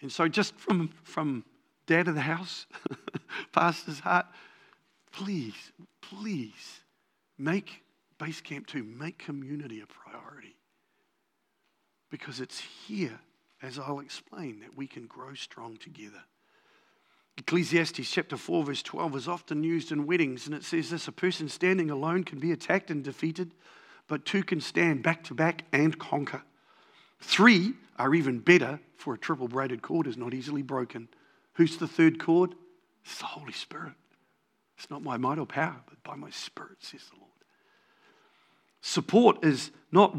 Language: English